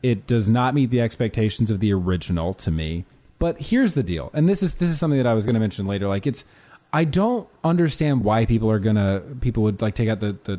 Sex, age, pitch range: male, 30-49, 105-145 Hz